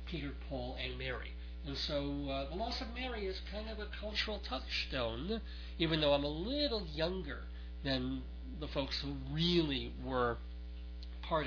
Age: 40-59